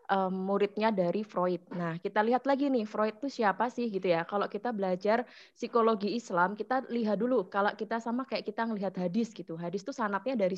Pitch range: 185-225 Hz